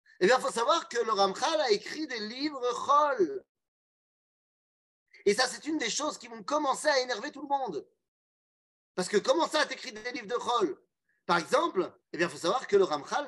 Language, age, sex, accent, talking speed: French, 30-49, male, French, 205 wpm